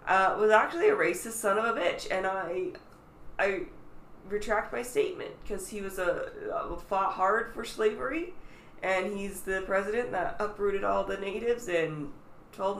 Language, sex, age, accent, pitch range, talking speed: English, female, 20-39, American, 165-210 Hz, 165 wpm